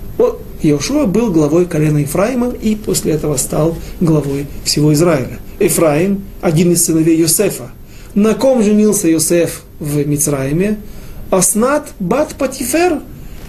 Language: Russian